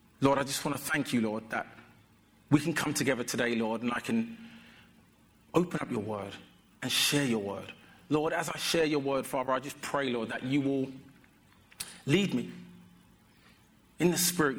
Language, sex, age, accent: English, male, 40-59, British